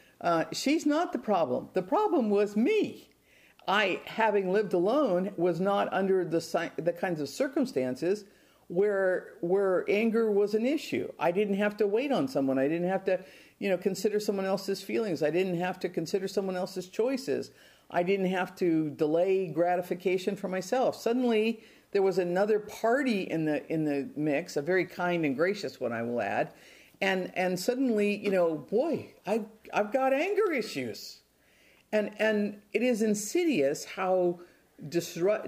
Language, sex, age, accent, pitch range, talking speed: English, female, 50-69, American, 165-220 Hz, 175 wpm